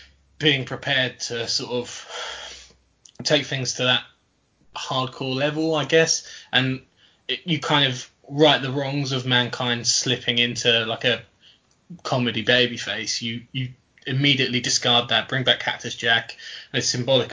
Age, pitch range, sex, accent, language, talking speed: 20-39, 120-135 Hz, male, British, English, 140 wpm